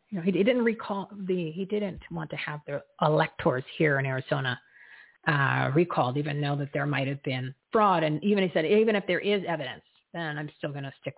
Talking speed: 220 wpm